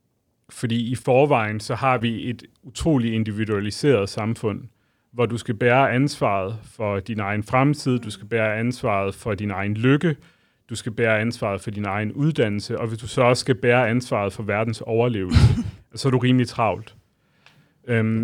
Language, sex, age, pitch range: Danish, male, 30-49, 110-130 Hz